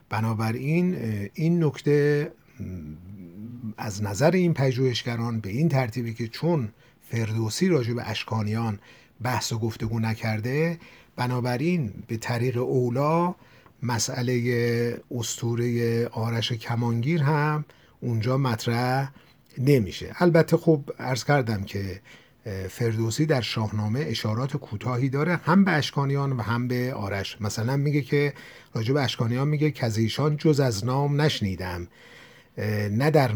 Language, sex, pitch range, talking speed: Persian, male, 110-145 Hz, 110 wpm